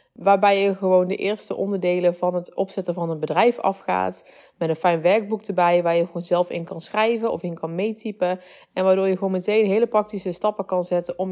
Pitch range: 170-200 Hz